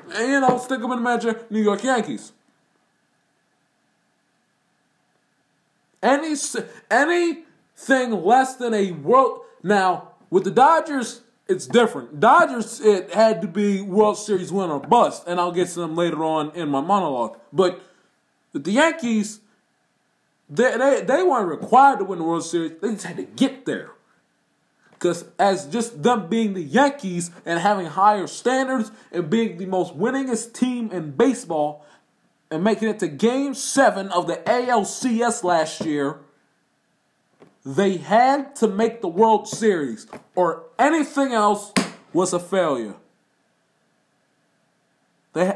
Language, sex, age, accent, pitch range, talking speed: English, male, 20-39, American, 185-250 Hz, 140 wpm